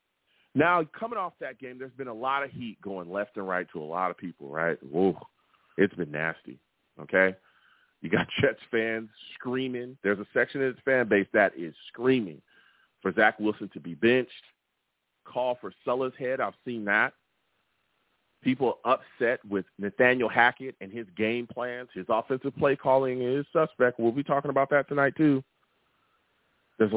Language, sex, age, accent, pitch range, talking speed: English, male, 40-59, American, 115-155 Hz, 170 wpm